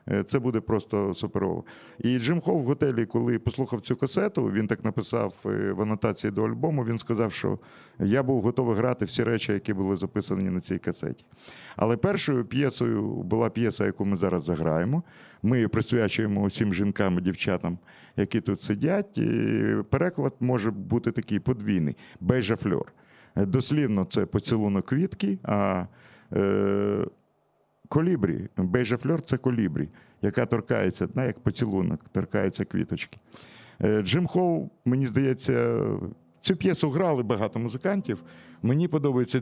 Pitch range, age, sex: 100-130 Hz, 50-69, male